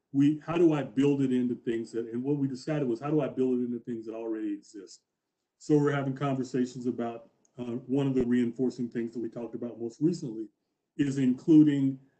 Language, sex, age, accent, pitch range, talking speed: English, male, 40-59, American, 120-140 Hz, 210 wpm